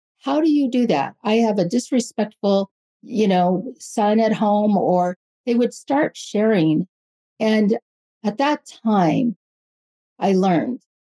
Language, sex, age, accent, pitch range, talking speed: English, female, 50-69, American, 175-220 Hz, 135 wpm